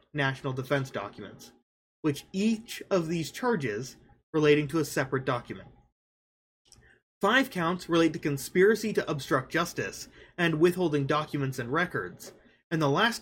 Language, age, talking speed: English, 20-39, 130 wpm